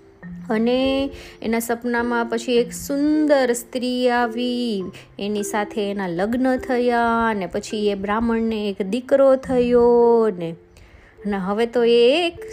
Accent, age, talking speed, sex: native, 20-39, 90 wpm, female